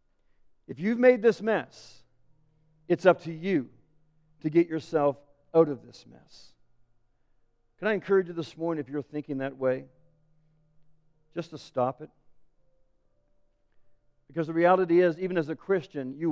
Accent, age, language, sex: American, 50-69, English, male